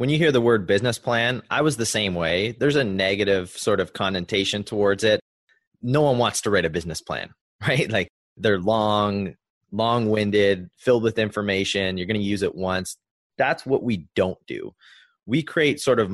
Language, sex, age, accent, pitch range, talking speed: English, male, 20-39, American, 95-115 Hz, 190 wpm